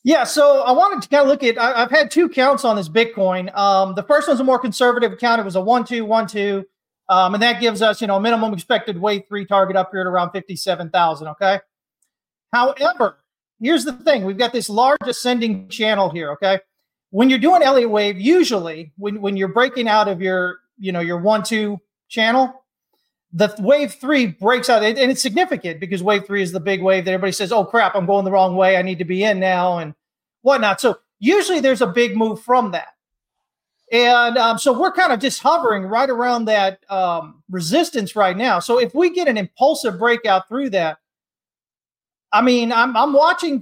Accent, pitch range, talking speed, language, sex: American, 195-250 Hz, 210 wpm, English, male